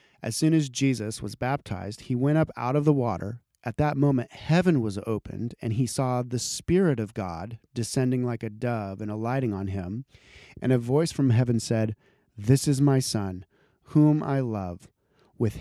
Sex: male